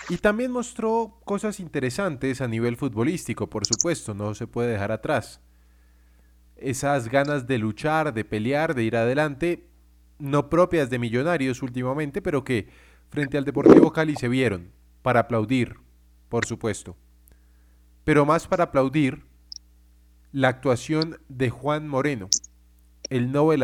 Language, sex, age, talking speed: Spanish, male, 30-49, 130 wpm